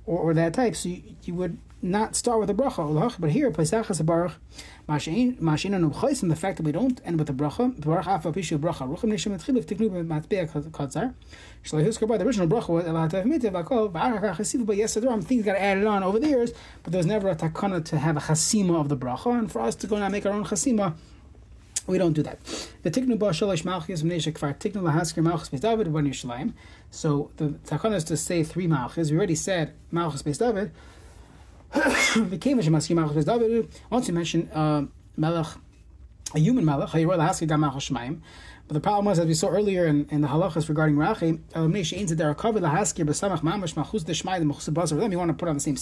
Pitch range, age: 155-210 Hz, 30-49